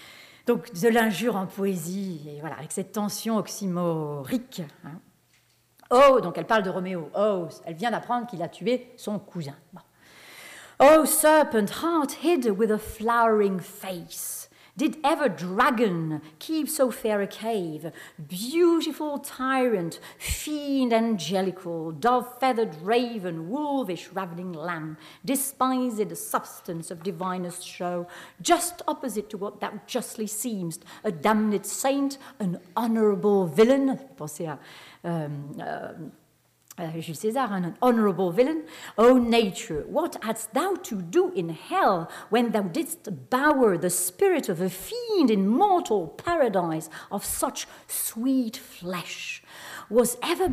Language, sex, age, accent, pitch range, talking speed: French, female, 40-59, French, 180-260 Hz, 125 wpm